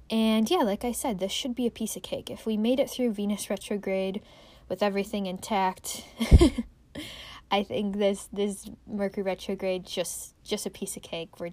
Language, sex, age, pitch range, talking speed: English, female, 10-29, 180-225 Hz, 180 wpm